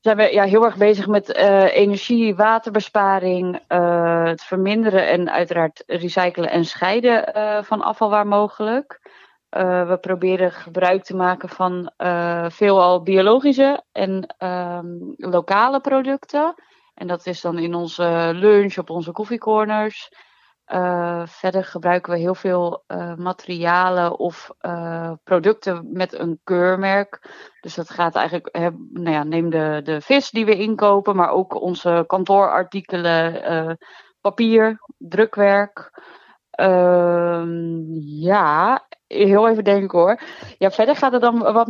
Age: 30-49